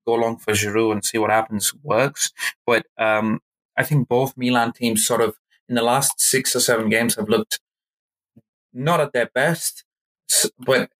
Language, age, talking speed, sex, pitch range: English, 30-49, 175 wpm, male, 110-130 Hz